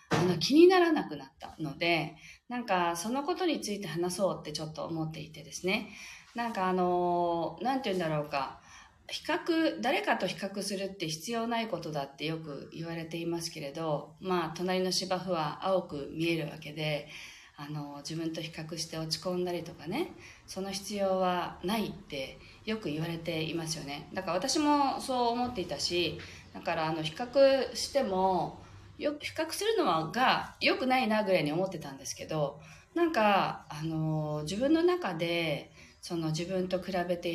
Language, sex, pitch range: Japanese, female, 155-215 Hz